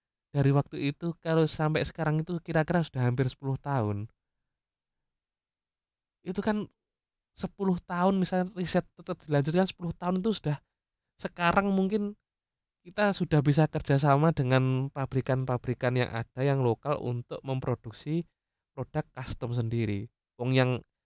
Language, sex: Indonesian, male